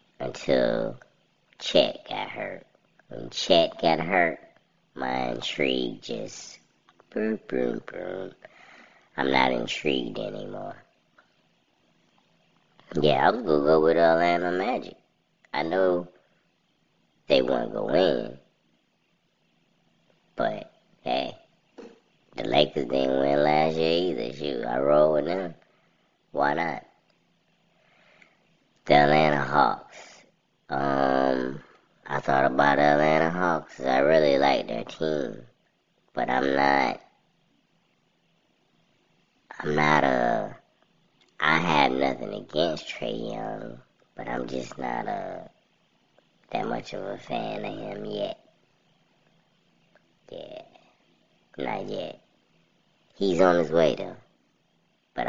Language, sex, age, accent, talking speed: English, male, 20-39, American, 105 wpm